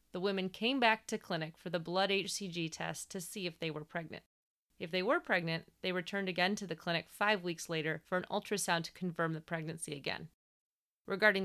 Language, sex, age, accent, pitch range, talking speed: English, female, 30-49, American, 165-205 Hz, 205 wpm